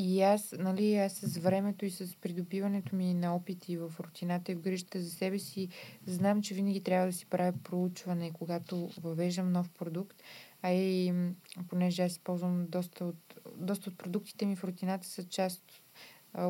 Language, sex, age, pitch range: Bulgarian, female, 20-39, 185-215 Hz